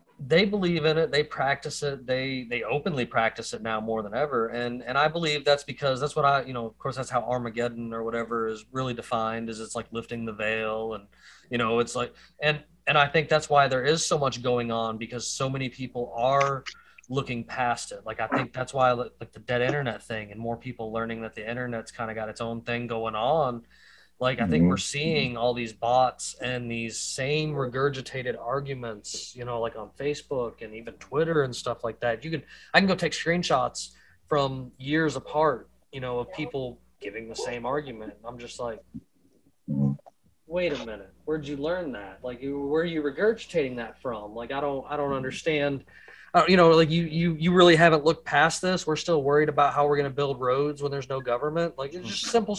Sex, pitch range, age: male, 120-155 Hz, 20-39